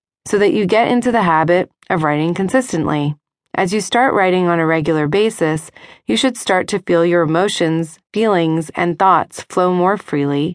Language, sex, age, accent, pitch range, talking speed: English, female, 30-49, American, 160-200 Hz, 175 wpm